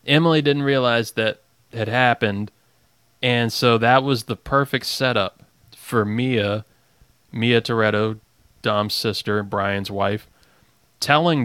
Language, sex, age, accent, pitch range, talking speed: English, male, 30-49, American, 105-125 Hz, 115 wpm